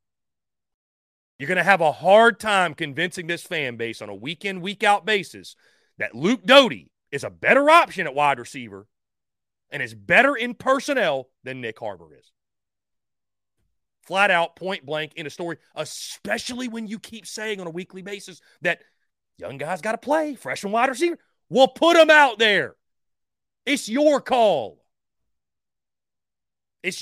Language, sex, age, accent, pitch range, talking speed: English, male, 40-59, American, 155-220 Hz, 160 wpm